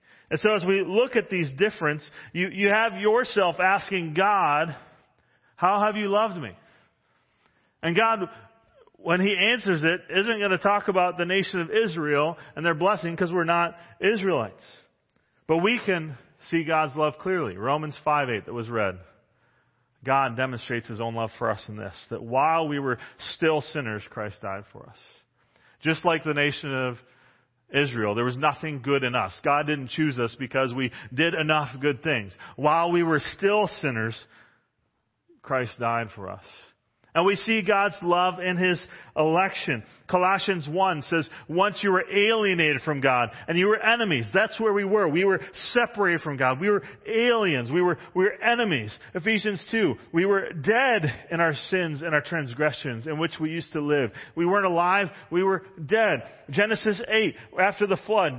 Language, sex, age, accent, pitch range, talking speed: English, male, 40-59, American, 140-195 Hz, 175 wpm